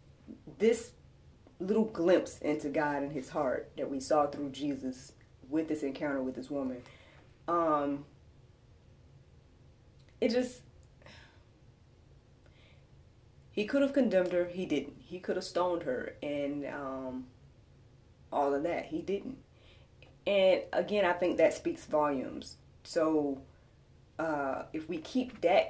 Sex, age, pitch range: female, 20-39, 135-175 Hz